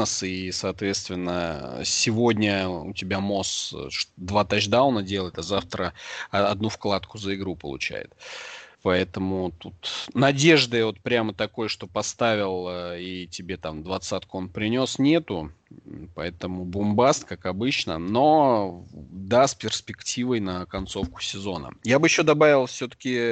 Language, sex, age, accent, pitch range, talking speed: Russian, male, 20-39, native, 95-115 Hz, 120 wpm